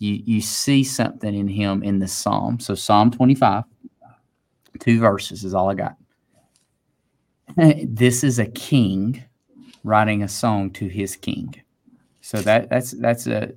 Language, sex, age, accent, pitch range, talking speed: English, male, 30-49, American, 100-125 Hz, 140 wpm